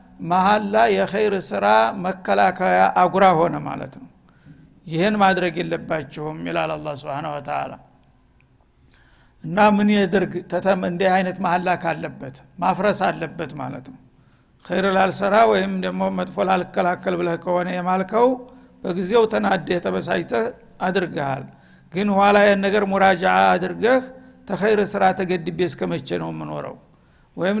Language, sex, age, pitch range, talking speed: Amharic, male, 60-79, 165-200 Hz, 85 wpm